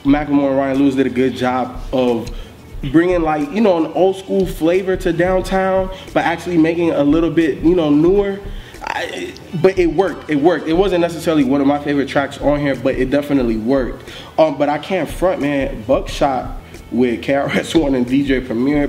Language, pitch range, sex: English, 125-165 Hz, male